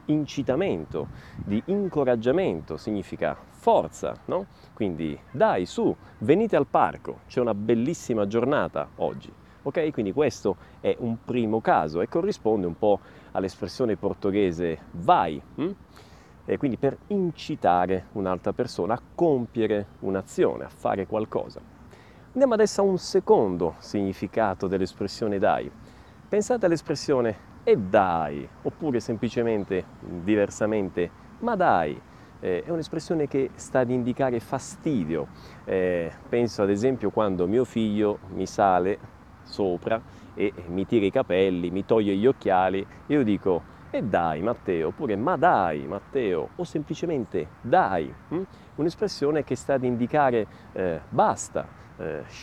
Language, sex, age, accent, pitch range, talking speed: Italian, male, 30-49, native, 95-135 Hz, 125 wpm